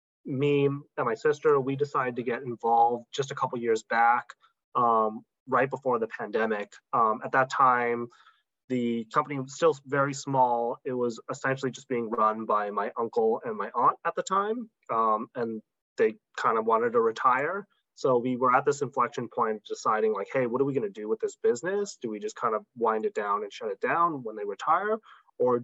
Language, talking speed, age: English, 205 wpm, 20-39